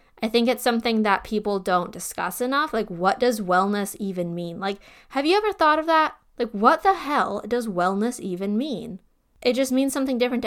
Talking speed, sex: 200 wpm, female